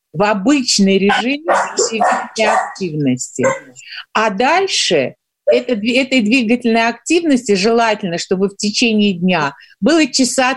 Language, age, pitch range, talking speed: Russian, 50-69, 200-260 Hz, 100 wpm